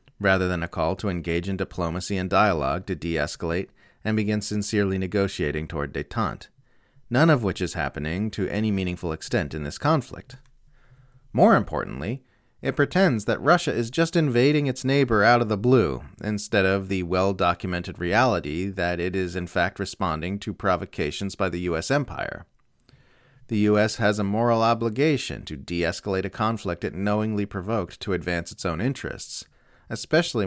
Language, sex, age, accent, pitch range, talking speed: English, male, 30-49, American, 95-125 Hz, 160 wpm